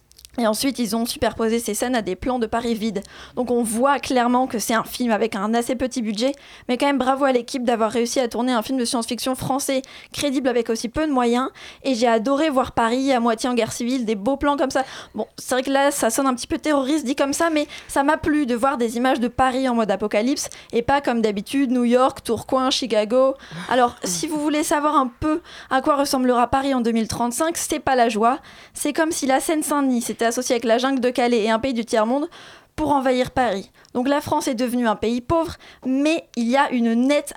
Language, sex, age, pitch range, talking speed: French, female, 20-39, 230-280 Hz, 240 wpm